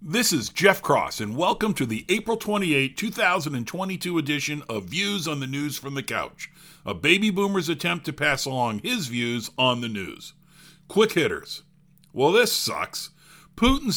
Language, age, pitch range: English, 50-69, 145-195 Hz